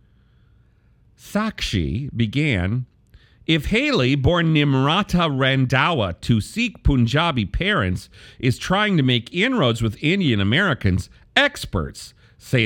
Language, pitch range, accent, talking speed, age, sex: English, 105-150 Hz, American, 100 wpm, 50-69, male